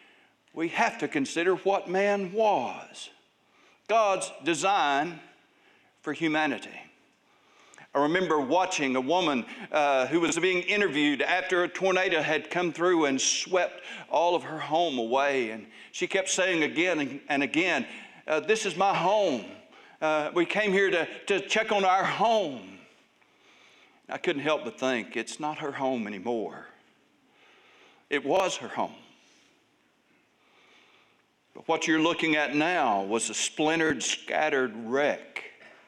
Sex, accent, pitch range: male, American, 135-195 Hz